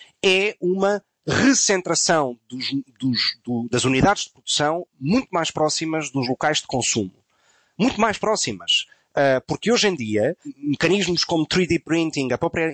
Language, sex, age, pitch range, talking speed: Portuguese, male, 30-49, 135-180 Hz, 125 wpm